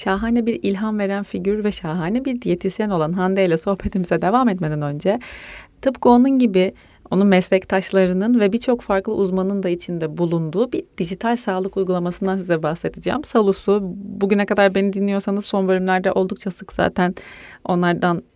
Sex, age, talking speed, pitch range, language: female, 30-49, 145 wpm, 180-220 Hz, Turkish